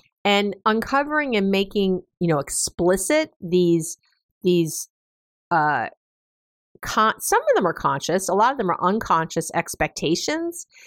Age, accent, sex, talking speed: 50-69, American, female, 125 wpm